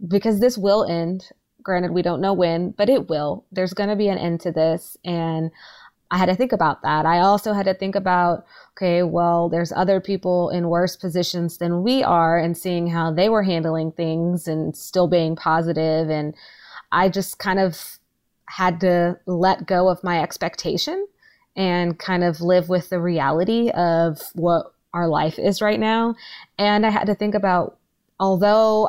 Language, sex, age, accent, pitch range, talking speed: English, female, 20-39, American, 170-195 Hz, 185 wpm